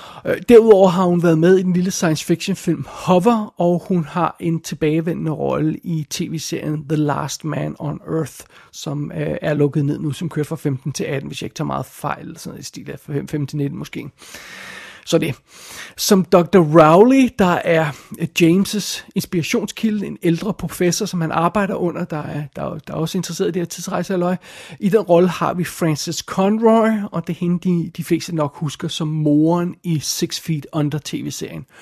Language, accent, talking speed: Danish, native, 195 wpm